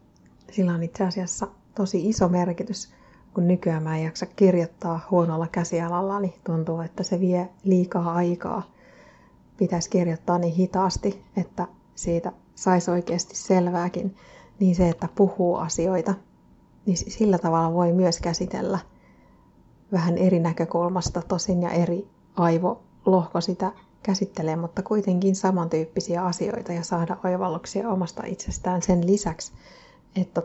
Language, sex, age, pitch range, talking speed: Finnish, female, 30-49, 175-190 Hz, 125 wpm